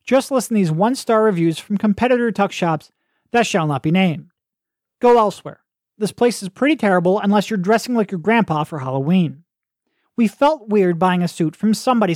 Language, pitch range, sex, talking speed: English, 175-230 Hz, male, 190 wpm